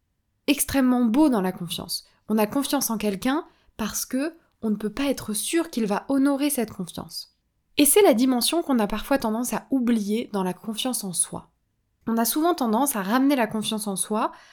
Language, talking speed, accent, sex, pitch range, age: French, 200 wpm, French, female, 205-275 Hz, 20-39